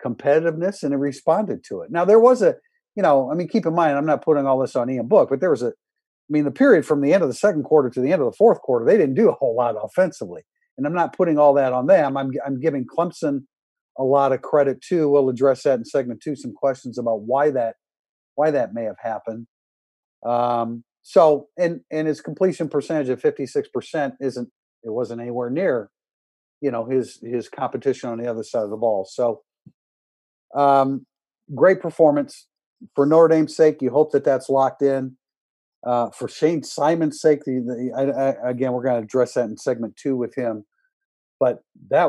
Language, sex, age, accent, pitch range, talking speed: English, male, 50-69, American, 125-160 Hz, 215 wpm